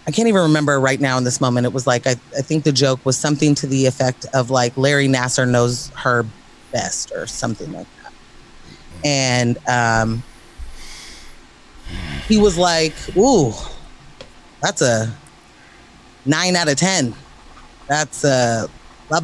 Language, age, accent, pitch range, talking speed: English, 30-49, American, 130-175 Hz, 150 wpm